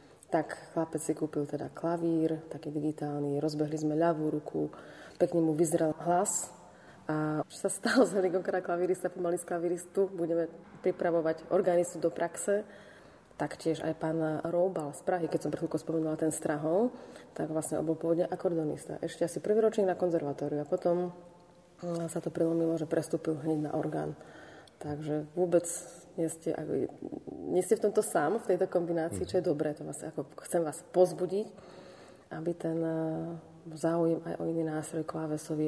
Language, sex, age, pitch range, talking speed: Slovak, female, 30-49, 155-180 Hz, 160 wpm